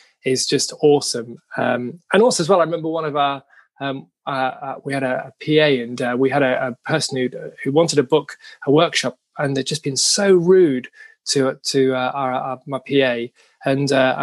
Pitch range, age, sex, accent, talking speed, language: 130-155 Hz, 20-39, male, British, 210 wpm, English